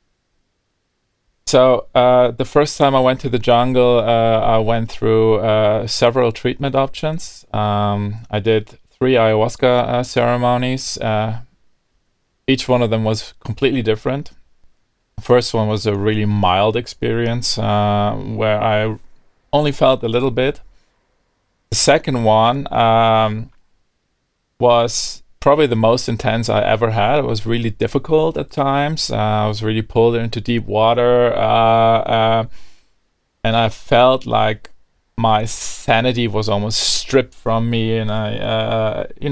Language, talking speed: English, 140 wpm